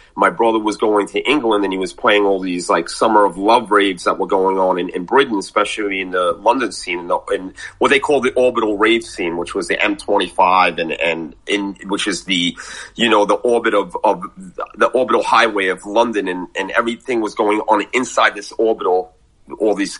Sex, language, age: male, English, 30-49